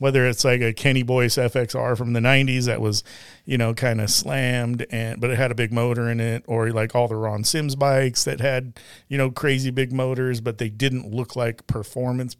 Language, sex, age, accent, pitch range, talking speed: English, male, 40-59, American, 115-130 Hz, 225 wpm